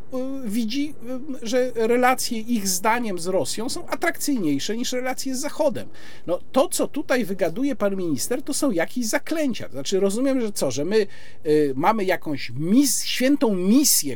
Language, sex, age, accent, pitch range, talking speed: Polish, male, 50-69, native, 180-255 Hz, 155 wpm